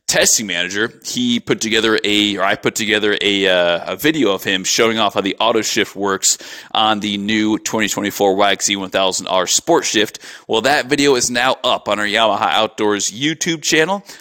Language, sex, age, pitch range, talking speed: English, male, 30-49, 100-120 Hz, 180 wpm